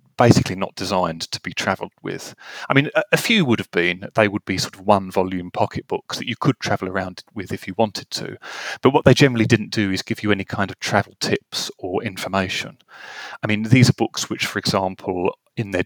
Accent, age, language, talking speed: British, 30-49, English, 220 wpm